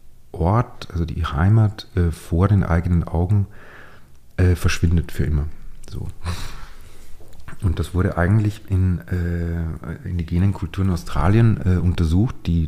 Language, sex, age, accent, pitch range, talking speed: German, male, 40-59, German, 80-95 Hz, 125 wpm